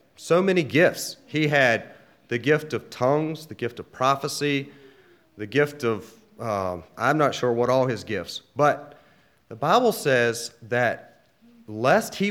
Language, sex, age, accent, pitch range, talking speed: English, male, 30-49, American, 110-160 Hz, 150 wpm